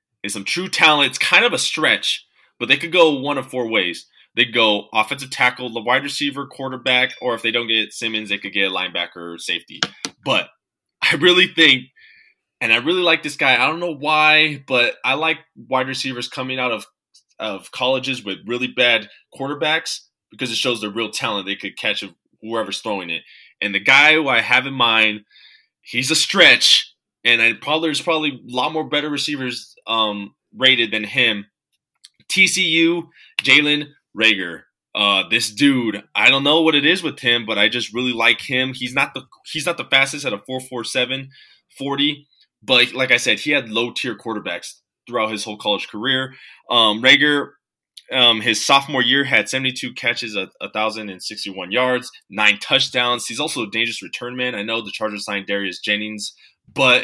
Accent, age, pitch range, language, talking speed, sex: American, 20-39, 110-140 Hz, English, 185 wpm, male